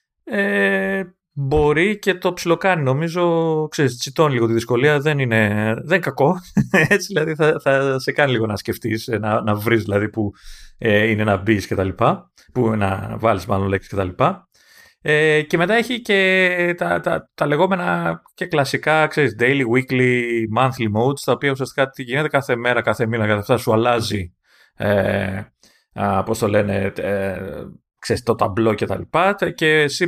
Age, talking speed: 30-49, 175 wpm